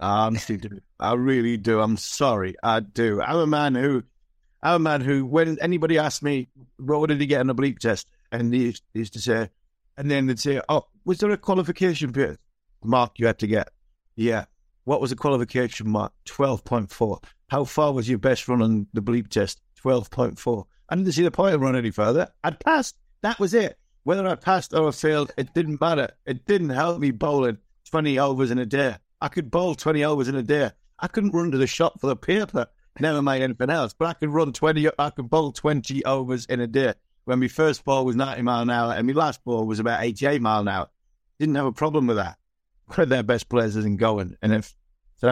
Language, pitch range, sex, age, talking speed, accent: English, 115-145 Hz, male, 50-69, 220 wpm, British